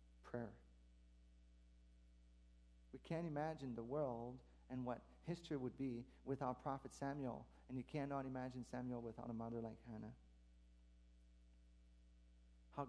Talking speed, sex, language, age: 115 wpm, male, English, 40-59